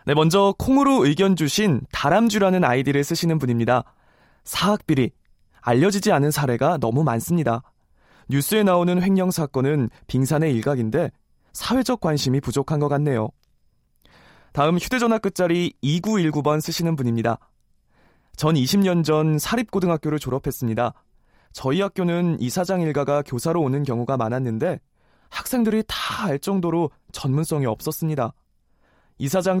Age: 20-39